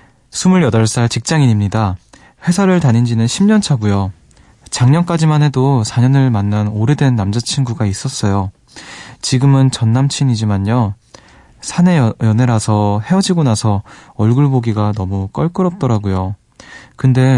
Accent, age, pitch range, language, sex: native, 20-39, 105-130 Hz, Korean, male